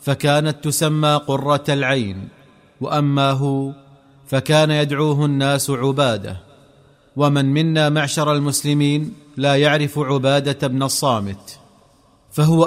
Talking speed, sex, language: 95 wpm, male, Arabic